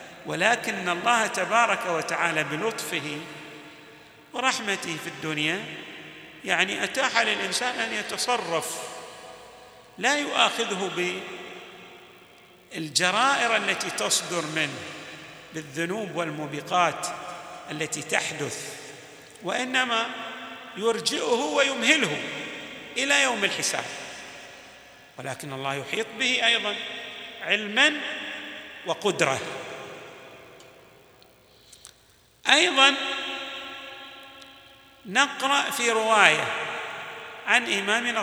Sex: male